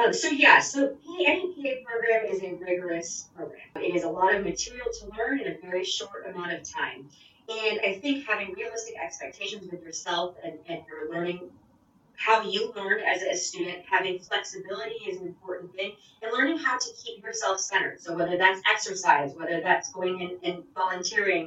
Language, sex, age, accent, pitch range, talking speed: English, female, 30-49, American, 175-245 Hz, 185 wpm